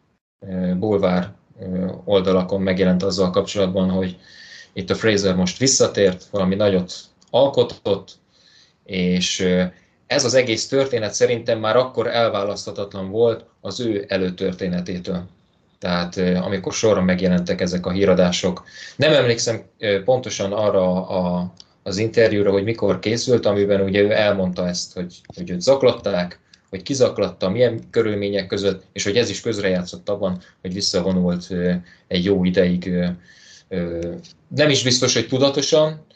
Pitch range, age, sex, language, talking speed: 90-110 Hz, 20-39, male, Hungarian, 120 wpm